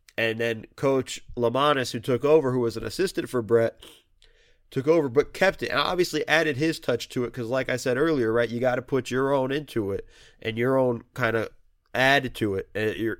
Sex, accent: male, American